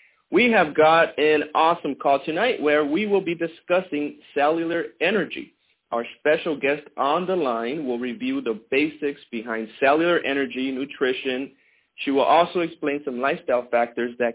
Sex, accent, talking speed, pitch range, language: male, American, 150 wpm, 125-170 Hz, English